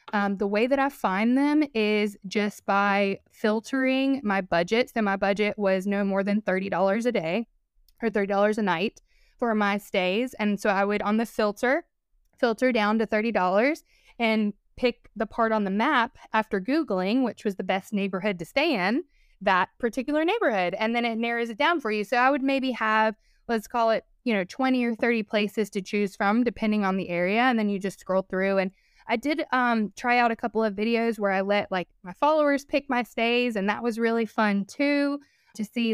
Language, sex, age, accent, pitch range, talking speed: English, female, 20-39, American, 205-255 Hz, 205 wpm